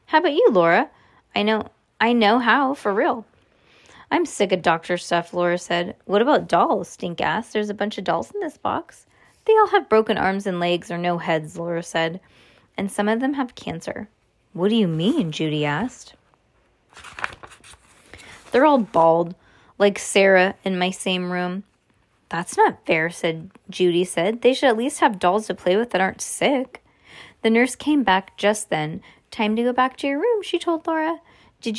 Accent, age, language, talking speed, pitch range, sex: American, 20-39, English, 185 wpm, 180-255 Hz, female